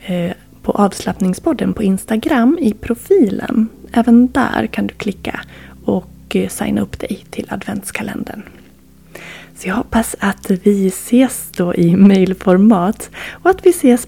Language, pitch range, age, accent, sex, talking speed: Swedish, 185-235 Hz, 20-39, native, female, 130 wpm